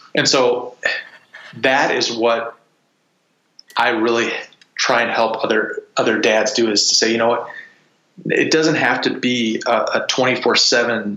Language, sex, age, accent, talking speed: English, male, 20-39, American, 155 wpm